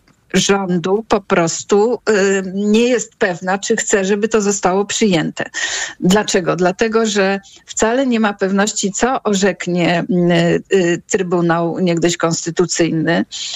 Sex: female